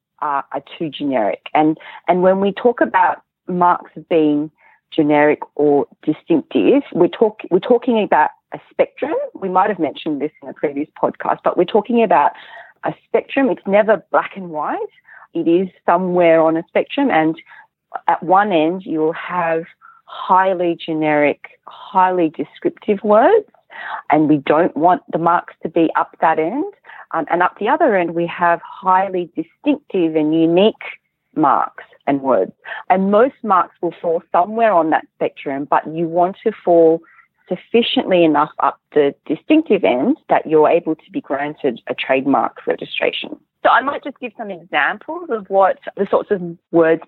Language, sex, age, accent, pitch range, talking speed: English, female, 40-59, Australian, 160-220 Hz, 160 wpm